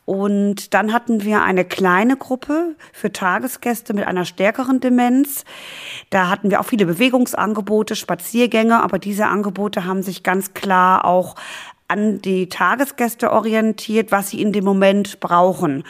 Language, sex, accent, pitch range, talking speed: German, female, German, 195-245 Hz, 145 wpm